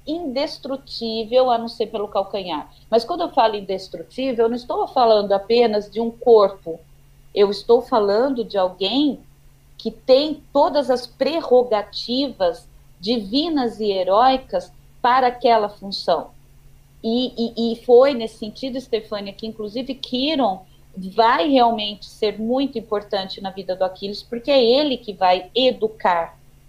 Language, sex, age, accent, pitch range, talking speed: Portuguese, female, 40-59, Brazilian, 195-255 Hz, 135 wpm